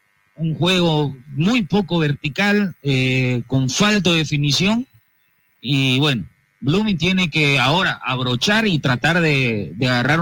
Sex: male